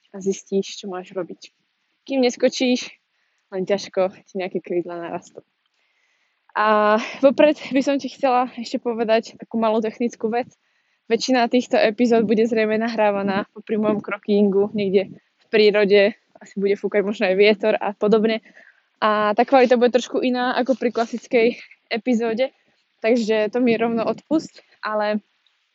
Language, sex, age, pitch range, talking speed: Slovak, female, 20-39, 205-245 Hz, 145 wpm